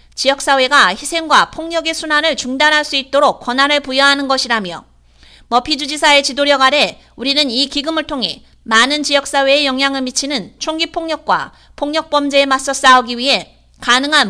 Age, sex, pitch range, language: 30-49, female, 250-295 Hz, Korean